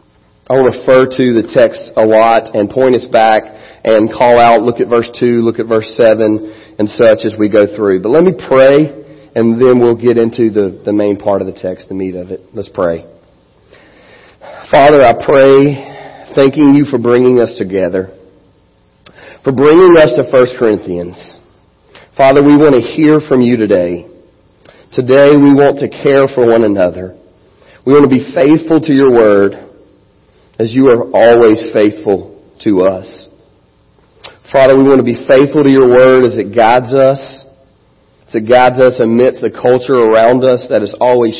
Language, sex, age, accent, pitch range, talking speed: English, male, 40-59, American, 105-135 Hz, 175 wpm